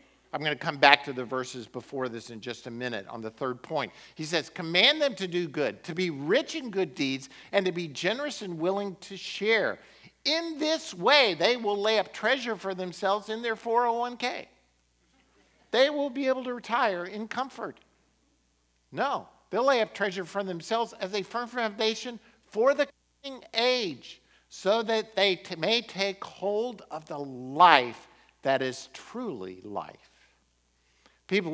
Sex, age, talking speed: male, 50-69, 170 wpm